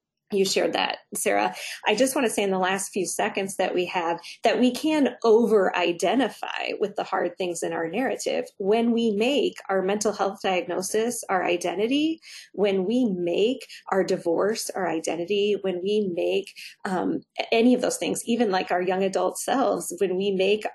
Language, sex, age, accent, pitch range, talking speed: English, female, 30-49, American, 185-230 Hz, 175 wpm